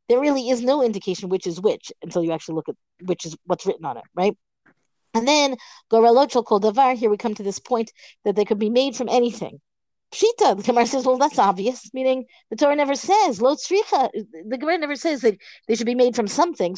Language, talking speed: English, 205 wpm